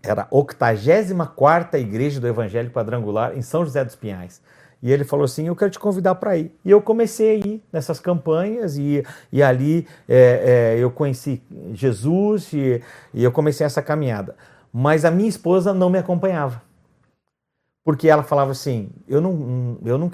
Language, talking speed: Portuguese, 165 wpm